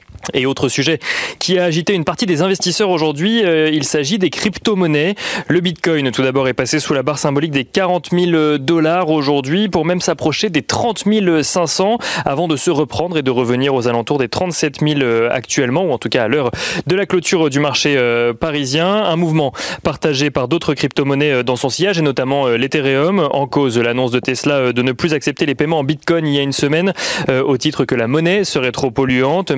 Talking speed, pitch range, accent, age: 210 wpm, 130-170 Hz, French, 30-49